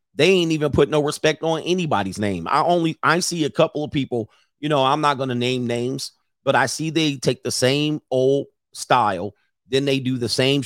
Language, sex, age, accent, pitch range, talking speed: English, male, 40-59, American, 120-155 Hz, 220 wpm